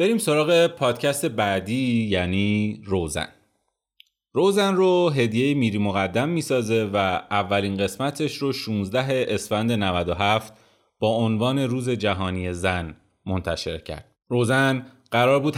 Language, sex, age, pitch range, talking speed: Persian, male, 30-49, 95-125 Hz, 110 wpm